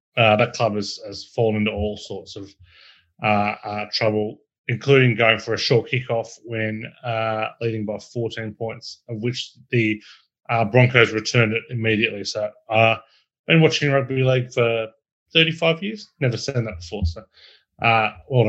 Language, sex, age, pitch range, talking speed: English, male, 30-49, 110-130 Hz, 160 wpm